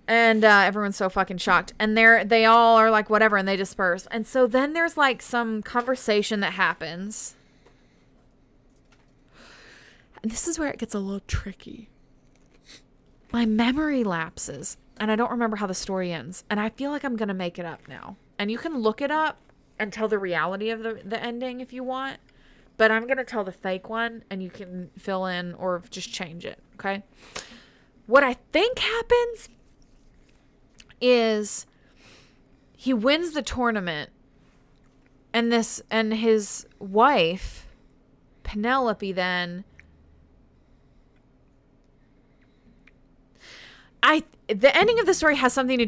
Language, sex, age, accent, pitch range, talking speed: English, female, 20-39, American, 180-235 Hz, 150 wpm